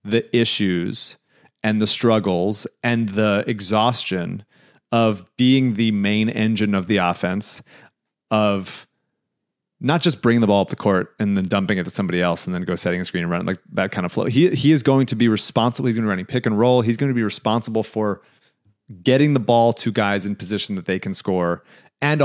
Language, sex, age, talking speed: English, male, 30-49, 205 wpm